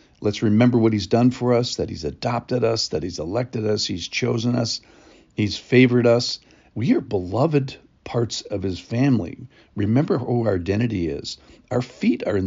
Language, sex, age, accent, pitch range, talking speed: English, male, 50-69, American, 95-120 Hz, 180 wpm